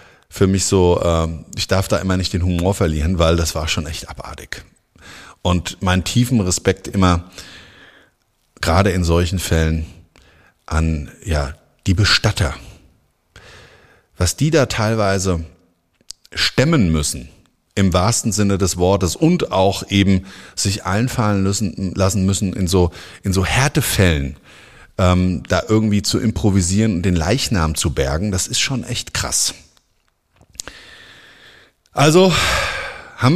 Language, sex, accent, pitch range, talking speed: German, male, German, 90-110 Hz, 125 wpm